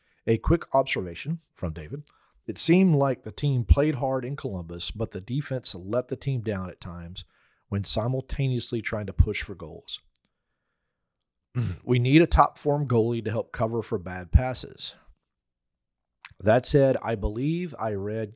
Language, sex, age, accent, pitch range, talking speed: English, male, 40-59, American, 90-125 Hz, 155 wpm